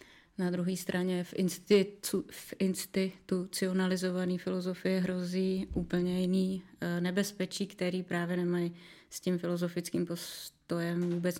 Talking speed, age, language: 95 wpm, 20-39, Czech